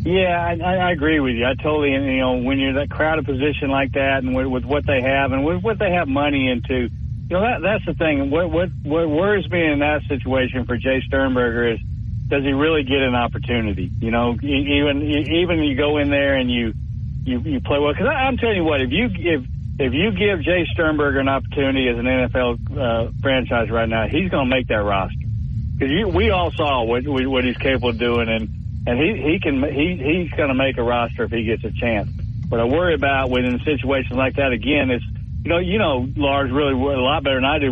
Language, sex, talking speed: English, male, 230 wpm